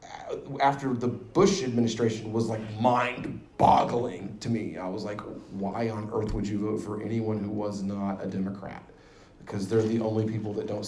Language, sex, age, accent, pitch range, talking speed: English, male, 30-49, American, 105-130 Hz, 175 wpm